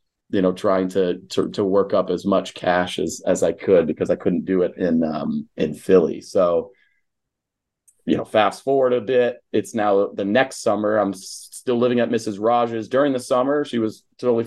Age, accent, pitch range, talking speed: 30-49, American, 100-130 Hz, 200 wpm